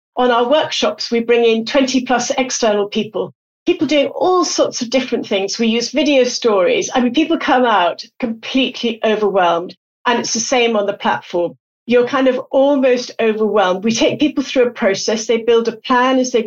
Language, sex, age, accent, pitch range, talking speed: English, female, 50-69, British, 205-255 Hz, 190 wpm